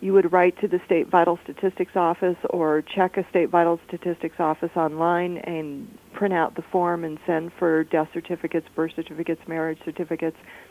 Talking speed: 175 wpm